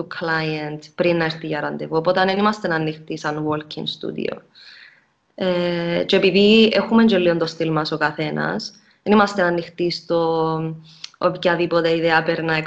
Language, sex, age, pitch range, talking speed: Greek, female, 20-39, 160-200 Hz, 165 wpm